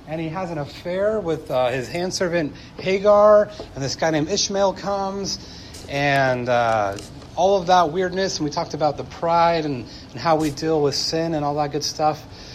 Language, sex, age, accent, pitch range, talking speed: English, male, 30-49, American, 140-185 Hz, 195 wpm